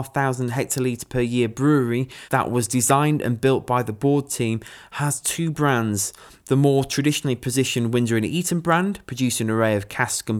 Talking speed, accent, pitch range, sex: 180 wpm, British, 110-140 Hz, male